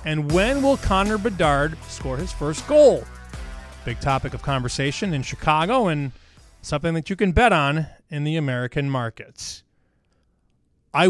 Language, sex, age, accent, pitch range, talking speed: English, male, 30-49, American, 130-180 Hz, 145 wpm